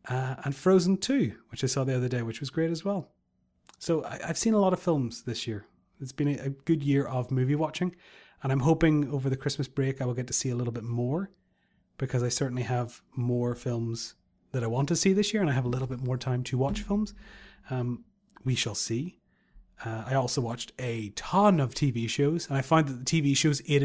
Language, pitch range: English, 125-150 Hz